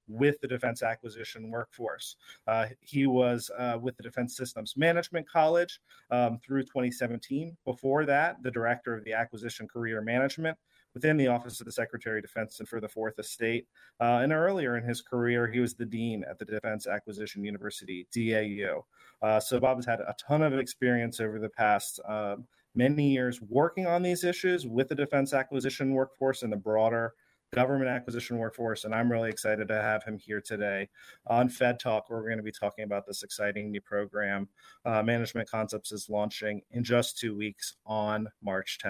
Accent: American